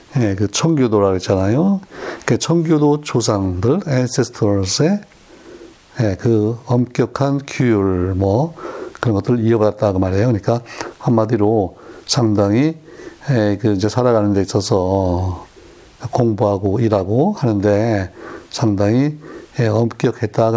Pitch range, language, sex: 100-130 Hz, Korean, male